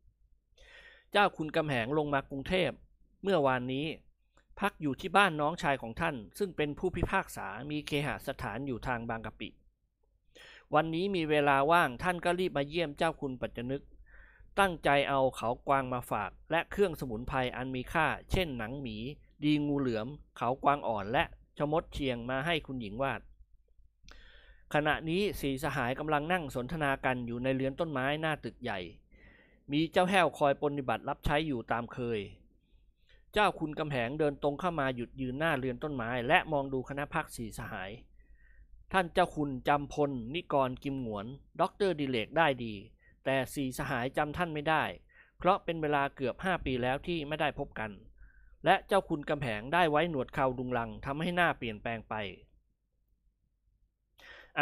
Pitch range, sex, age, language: 125-155 Hz, male, 20-39, Thai